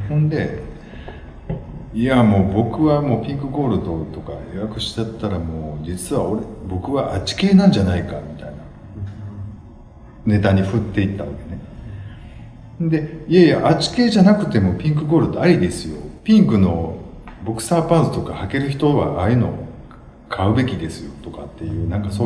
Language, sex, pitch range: Japanese, male, 80-125 Hz